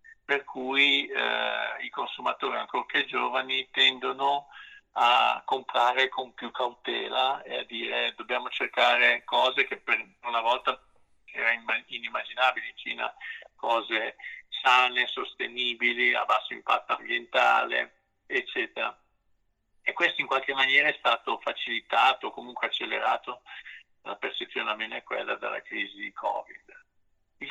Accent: native